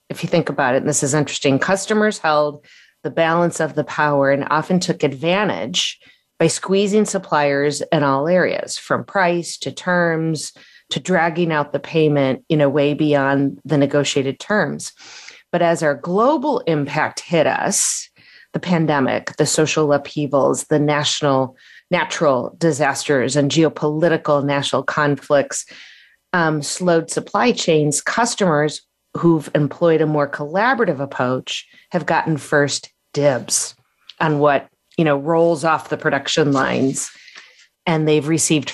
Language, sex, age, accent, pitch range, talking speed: English, female, 30-49, American, 140-165 Hz, 140 wpm